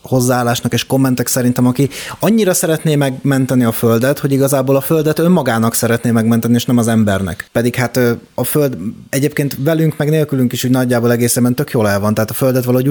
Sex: male